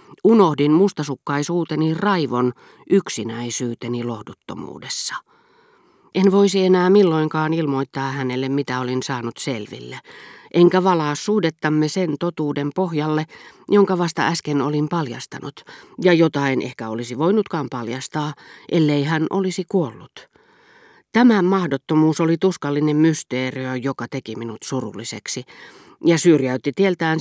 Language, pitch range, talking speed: Finnish, 135-190 Hz, 105 wpm